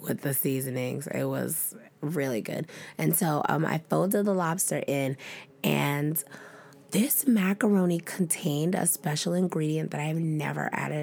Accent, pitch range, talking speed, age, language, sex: American, 145-190 Hz, 140 wpm, 20-39, English, female